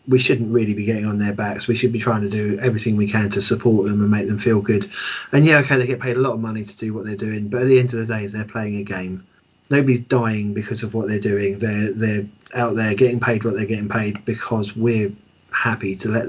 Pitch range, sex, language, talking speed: 110-125 Hz, male, English, 270 wpm